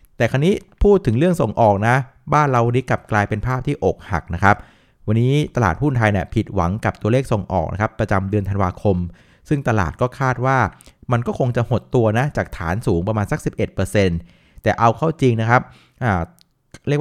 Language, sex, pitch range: Thai, male, 100-130 Hz